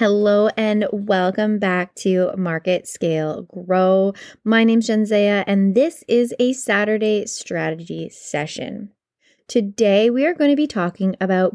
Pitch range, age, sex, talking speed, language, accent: 175-215 Hz, 20-39, female, 140 wpm, English, American